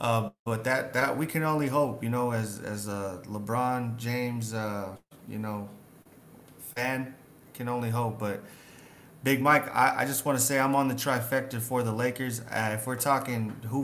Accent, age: American, 30-49